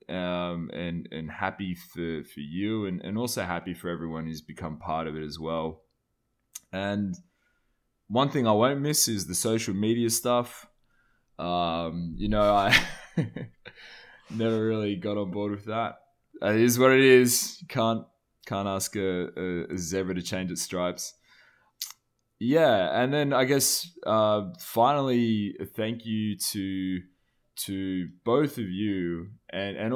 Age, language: 20-39, English